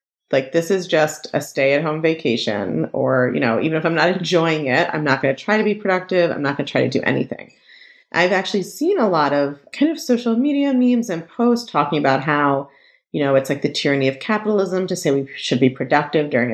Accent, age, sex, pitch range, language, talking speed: American, 30-49, female, 140-210 Hz, English, 235 wpm